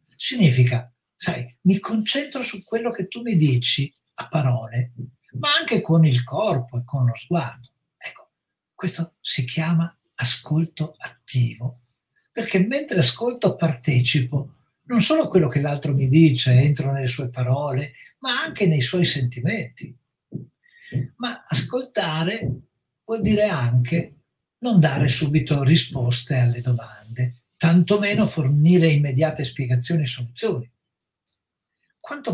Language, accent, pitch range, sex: Italian, native, 130-185 Hz, male